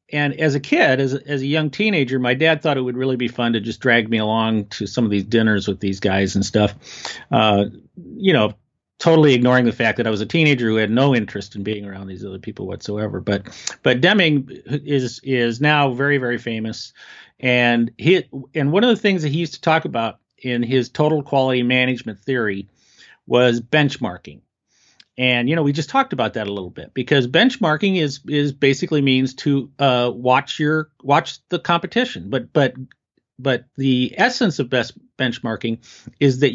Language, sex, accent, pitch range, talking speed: English, male, American, 115-150 Hz, 195 wpm